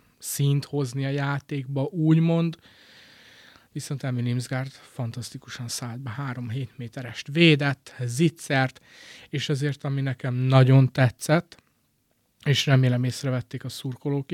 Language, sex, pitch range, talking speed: Hungarian, male, 125-145 Hz, 105 wpm